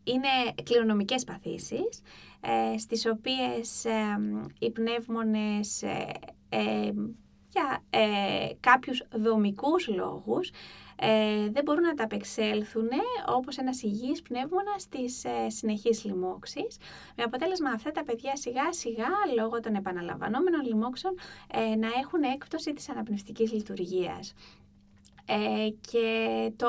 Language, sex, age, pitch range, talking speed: Greek, female, 20-39, 205-285 Hz, 110 wpm